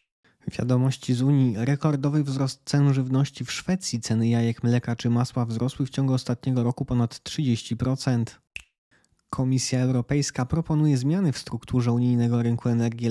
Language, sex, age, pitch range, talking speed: Polish, male, 20-39, 120-130 Hz, 135 wpm